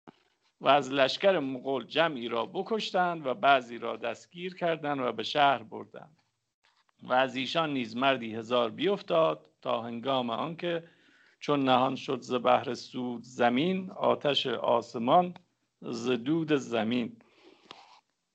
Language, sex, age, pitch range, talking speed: English, male, 50-69, 120-170 Hz, 125 wpm